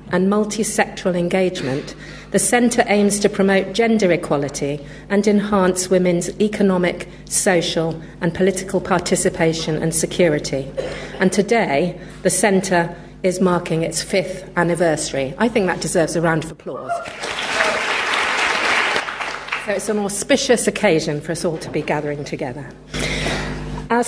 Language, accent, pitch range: English, British, 165-205 Hz